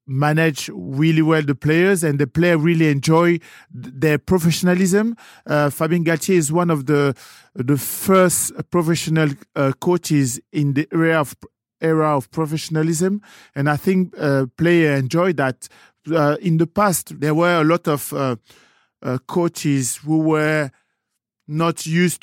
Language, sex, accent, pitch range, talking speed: English, male, French, 140-165 Hz, 150 wpm